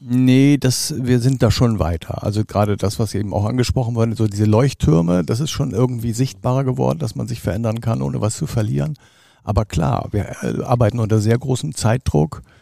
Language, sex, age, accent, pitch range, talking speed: German, male, 50-69, German, 105-130 Hz, 190 wpm